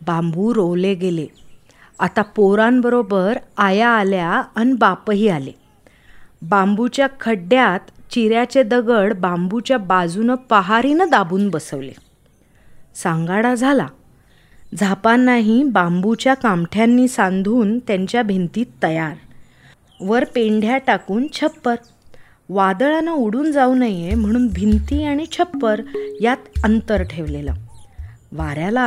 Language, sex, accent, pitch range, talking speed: Marathi, female, native, 185-255 Hz, 95 wpm